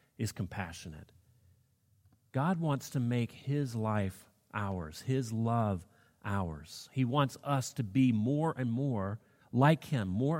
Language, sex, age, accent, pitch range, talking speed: English, male, 40-59, American, 110-140 Hz, 135 wpm